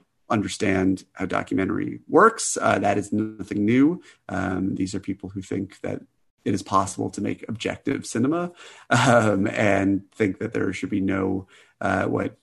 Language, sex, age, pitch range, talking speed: English, male, 30-49, 100-120 Hz, 160 wpm